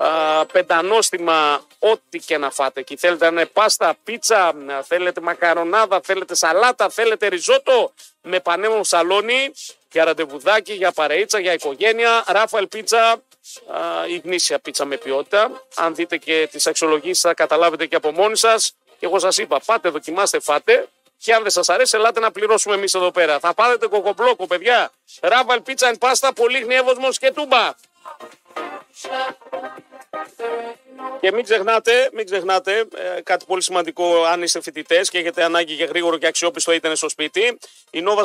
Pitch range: 170-225 Hz